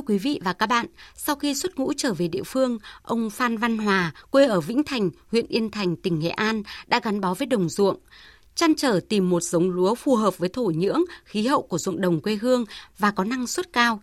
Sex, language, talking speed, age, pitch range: female, Vietnamese, 240 wpm, 20-39, 195-265 Hz